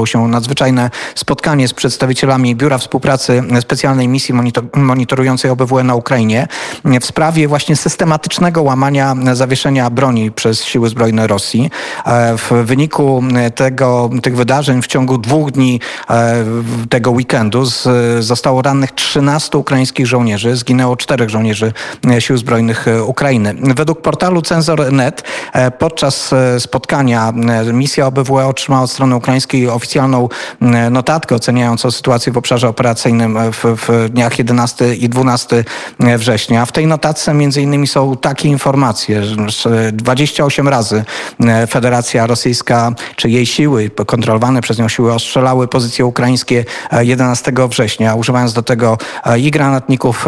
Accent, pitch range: native, 120-135 Hz